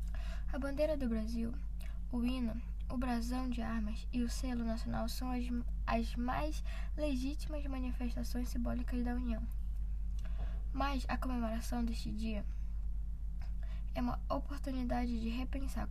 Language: Portuguese